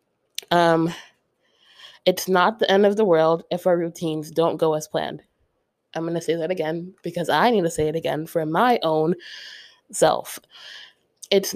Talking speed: 170 wpm